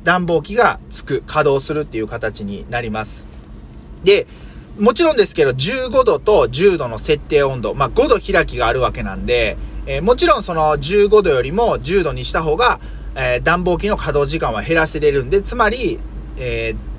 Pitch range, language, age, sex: 125-210 Hz, Japanese, 30-49, male